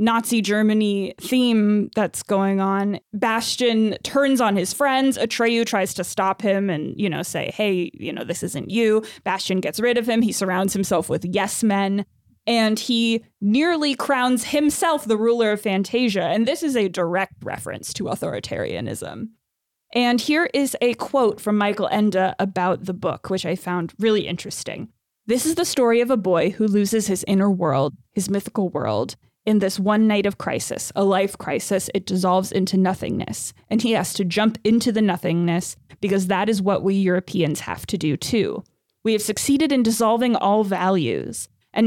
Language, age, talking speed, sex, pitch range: English, 20-39, 180 wpm, female, 190-230 Hz